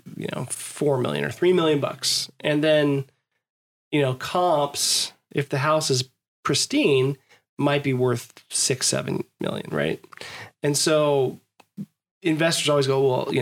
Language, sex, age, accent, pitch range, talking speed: English, male, 20-39, American, 130-155 Hz, 145 wpm